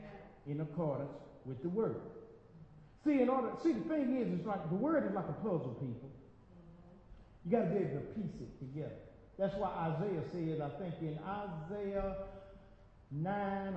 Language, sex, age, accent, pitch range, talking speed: English, male, 50-69, American, 160-235 Hz, 165 wpm